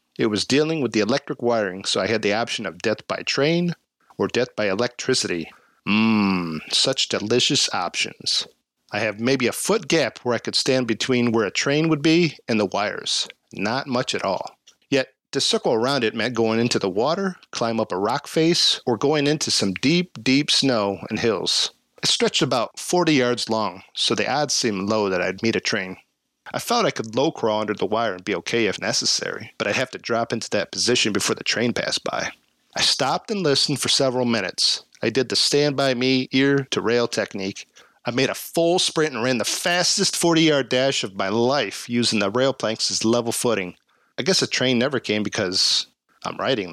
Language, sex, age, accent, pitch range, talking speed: English, male, 50-69, American, 110-145 Hz, 200 wpm